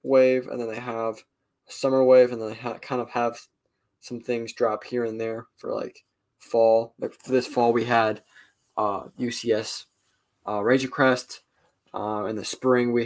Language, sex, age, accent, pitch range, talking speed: English, male, 20-39, American, 115-135 Hz, 180 wpm